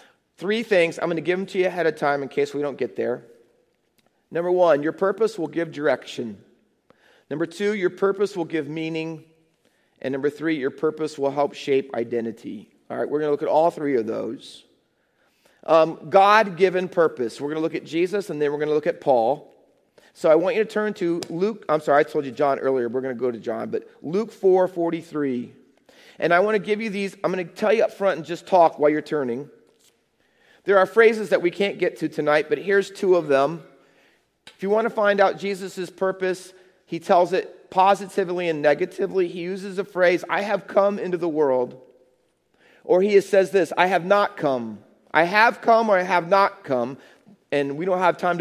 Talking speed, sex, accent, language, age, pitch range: 215 wpm, male, American, English, 40-59, 150-195 Hz